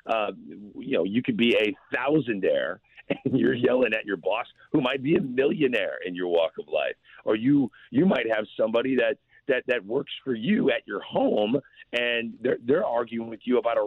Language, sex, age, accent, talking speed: English, male, 40-59, American, 205 wpm